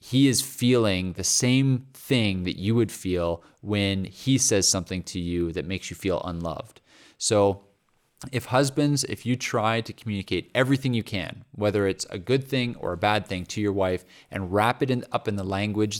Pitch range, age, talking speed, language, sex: 95-120 Hz, 30-49, 190 wpm, English, male